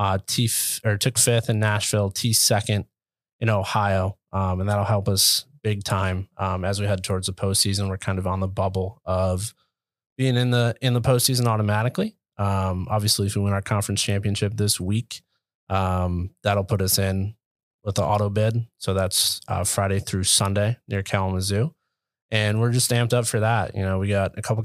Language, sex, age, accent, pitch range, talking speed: English, male, 20-39, American, 95-110 Hz, 190 wpm